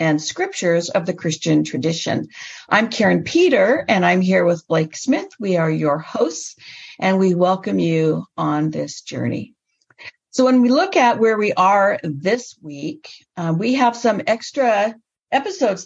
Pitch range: 160-230 Hz